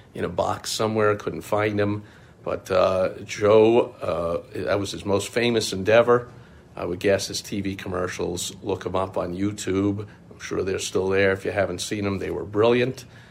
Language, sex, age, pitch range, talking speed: English, male, 50-69, 95-115 Hz, 185 wpm